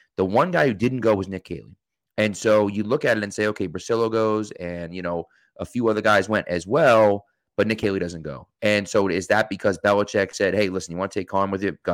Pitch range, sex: 95-120 Hz, male